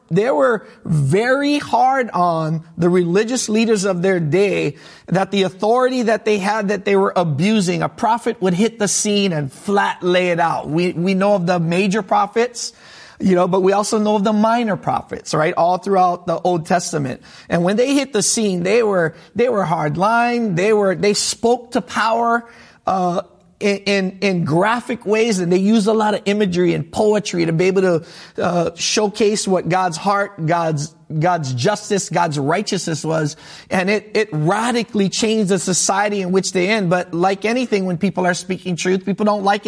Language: English